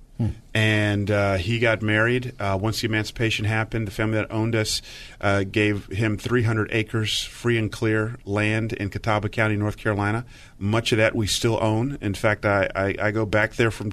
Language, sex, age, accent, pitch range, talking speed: English, male, 40-59, American, 110-130 Hz, 190 wpm